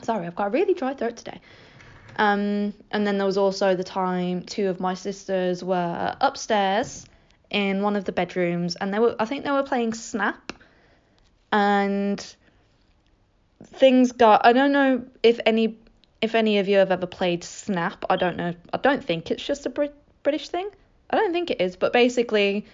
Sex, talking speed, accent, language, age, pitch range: female, 185 wpm, British, English, 20-39, 185-225 Hz